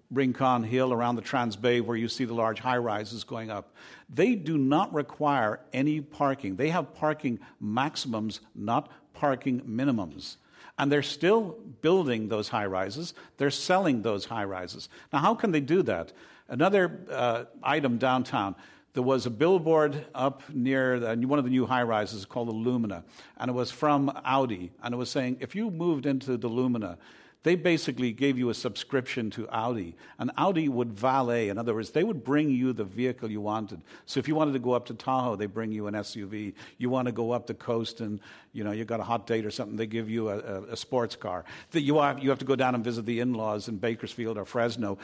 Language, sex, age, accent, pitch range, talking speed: English, male, 50-69, American, 115-145 Hz, 200 wpm